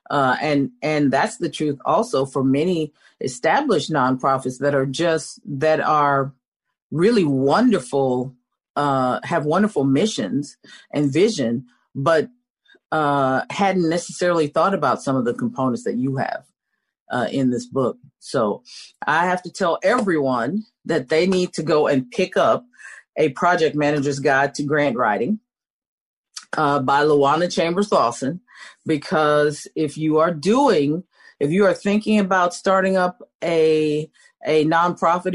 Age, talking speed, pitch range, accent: 40-59, 140 wpm, 140-185 Hz, American